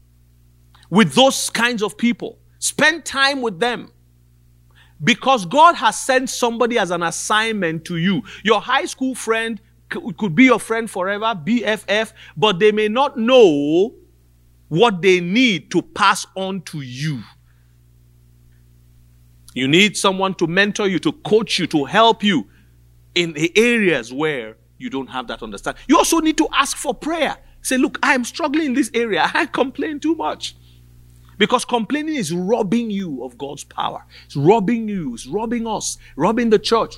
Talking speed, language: 160 wpm, English